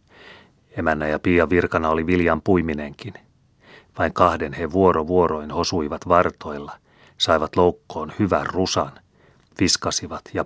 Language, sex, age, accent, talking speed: Finnish, male, 30-49, native, 110 wpm